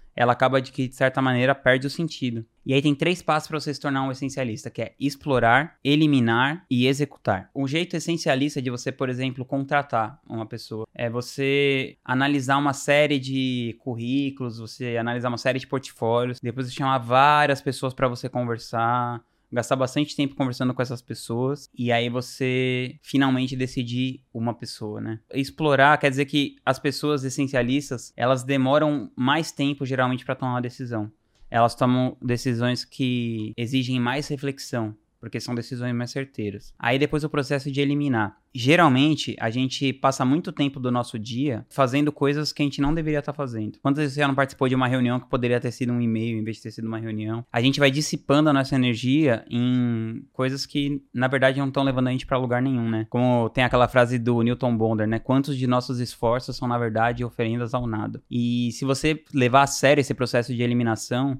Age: 20-39